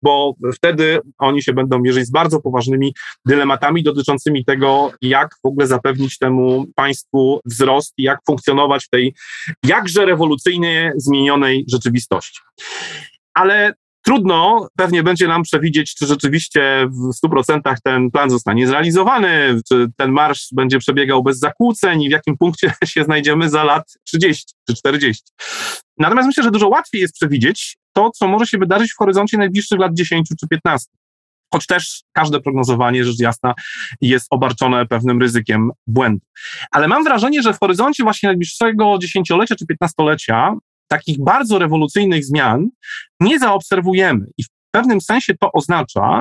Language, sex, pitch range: Polish, male, 130-185 Hz